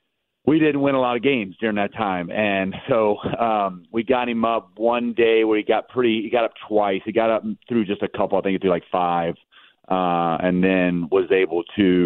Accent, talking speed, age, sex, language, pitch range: American, 235 wpm, 40-59, male, English, 90-105 Hz